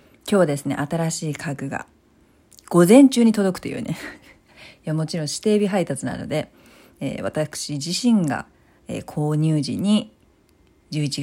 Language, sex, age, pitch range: Japanese, female, 40-59, 150-225 Hz